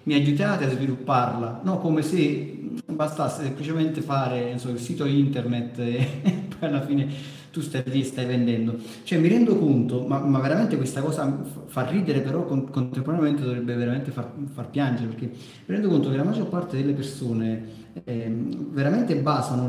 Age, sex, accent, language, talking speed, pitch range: 30-49, male, native, Italian, 165 wpm, 130-160 Hz